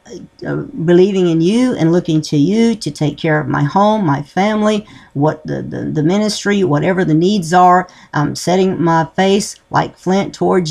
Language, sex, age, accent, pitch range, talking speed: English, female, 50-69, American, 155-190 Hz, 180 wpm